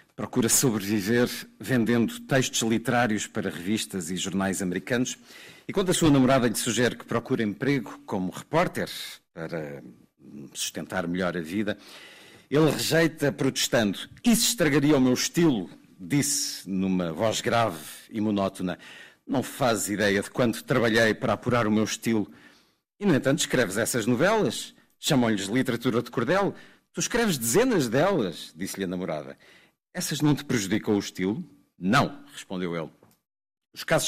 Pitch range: 100-135 Hz